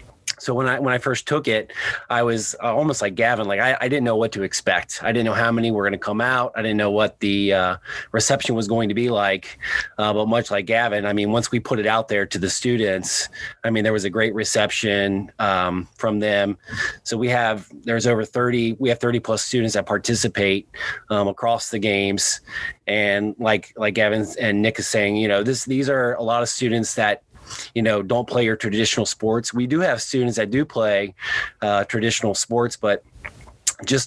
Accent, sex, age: American, male, 30-49